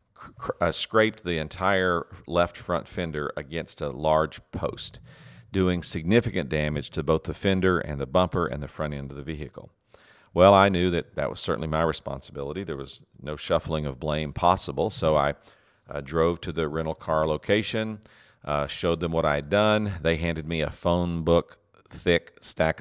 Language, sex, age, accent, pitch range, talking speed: English, male, 50-69, American, 75-95 Hz, 175 wpm